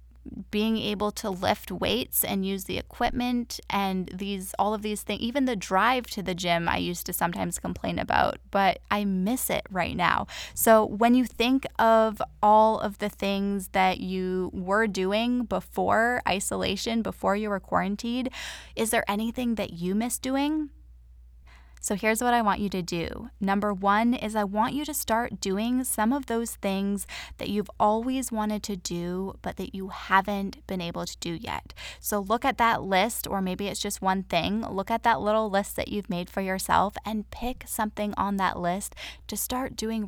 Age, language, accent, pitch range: 10-29, English, American, 185-225 Hz